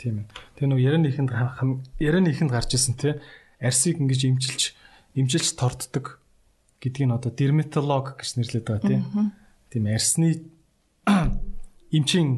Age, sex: 30-49, male